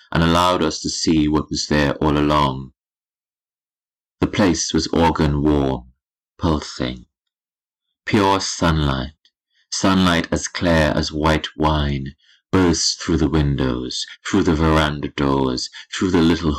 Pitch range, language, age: 70-85 Hz, English, 30-49